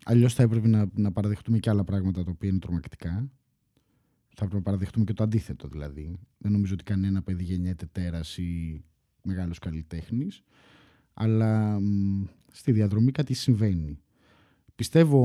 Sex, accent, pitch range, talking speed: male, native, 95-115 Hz, 150 wpm